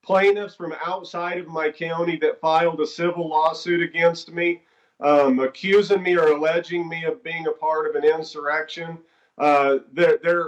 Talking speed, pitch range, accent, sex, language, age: 160 wpm, 155-190 Hz, American, male, English, 40-59